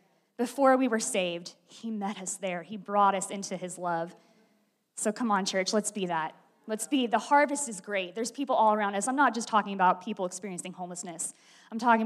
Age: 20-39